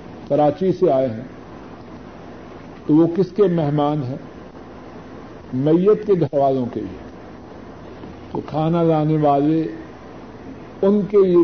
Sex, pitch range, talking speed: male, 155-195 Hz, 120 wpm